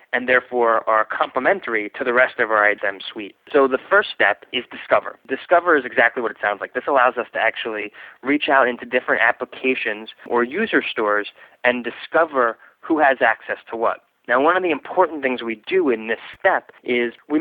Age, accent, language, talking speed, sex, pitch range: 20-39, American, English, 195 wpm, male, 110-135 Hz